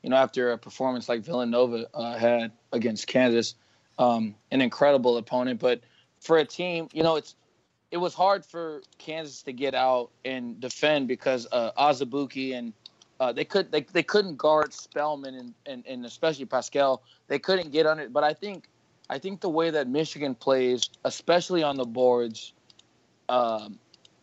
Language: English